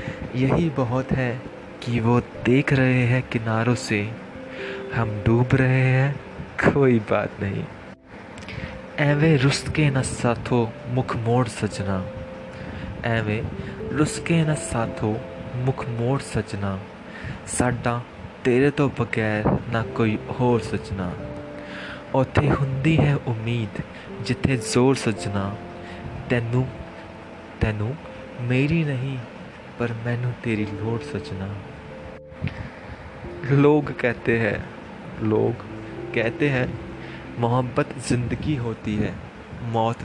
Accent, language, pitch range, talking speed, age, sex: native, Hindi, 105-130 Hz, 95 wpm, 20-39, male